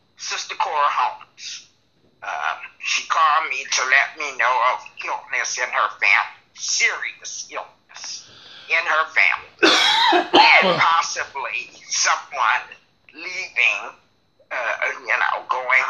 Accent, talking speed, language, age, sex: American, 110 wpm, English, 50-69, male